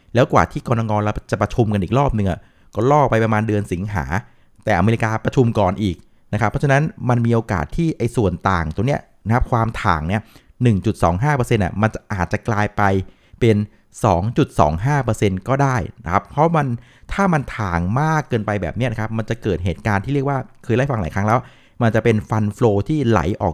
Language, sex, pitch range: Thai, male, 100-130 Hz